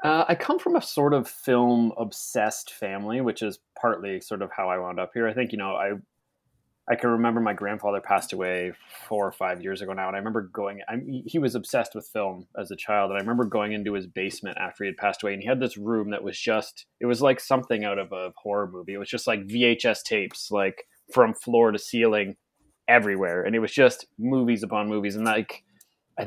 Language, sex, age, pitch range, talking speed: English, male, 20-39, 100-120 Hz, 230 wpm